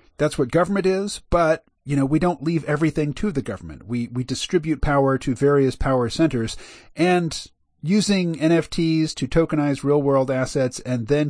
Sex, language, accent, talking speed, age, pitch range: male, English, American, 170 wpm, 40-59, 120-150 Hz